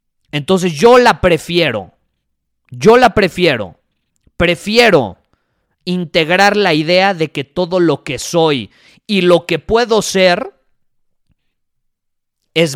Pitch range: 130-200 Hz